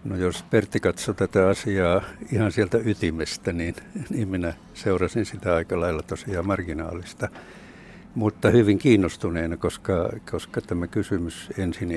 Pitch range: 90-105 Hz